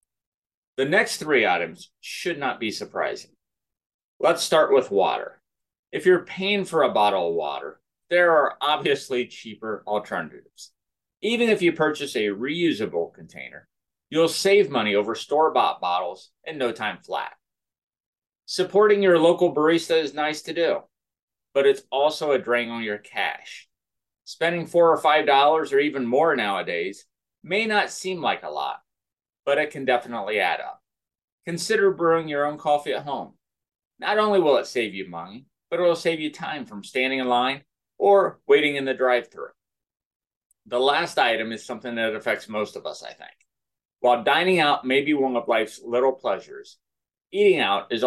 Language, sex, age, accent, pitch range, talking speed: English, male, 30-49, American, 120-175 Hz, 165 wpm